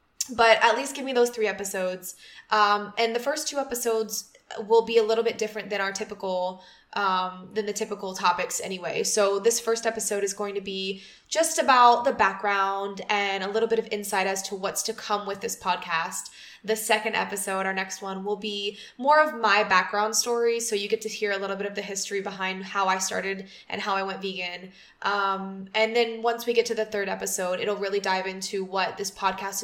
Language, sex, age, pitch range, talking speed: English, female, 20-39, 195-225 Hz, 215 wpm